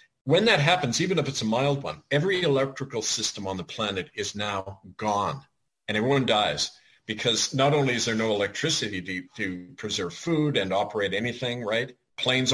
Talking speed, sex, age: 175 wpm, male, 50-69